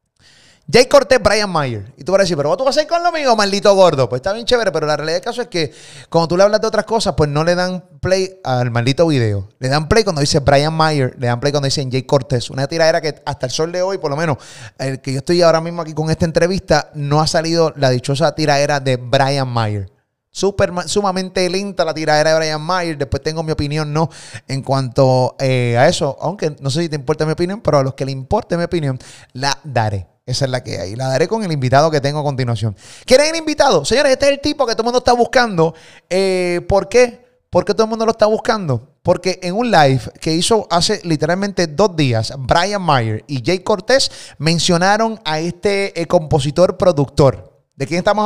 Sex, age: male, 30-49